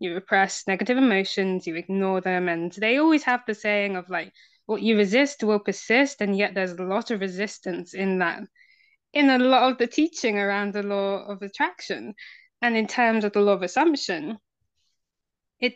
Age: 10-29